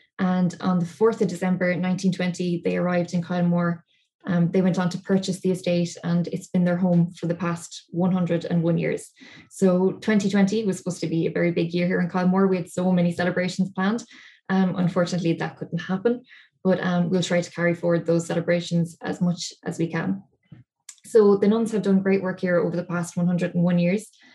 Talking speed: 195 wpm